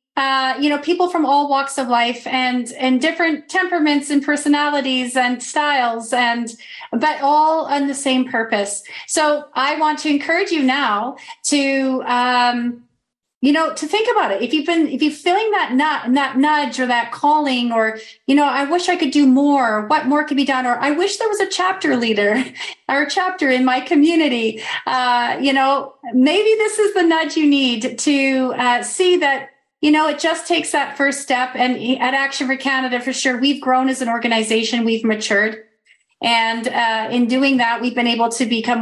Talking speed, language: 195 wpm, English